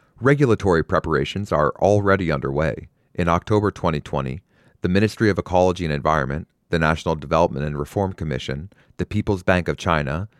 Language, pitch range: English, 75-100 Hz